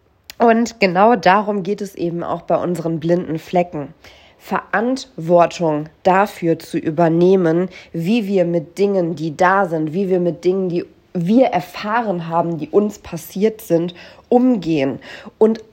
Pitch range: 170-220 Hz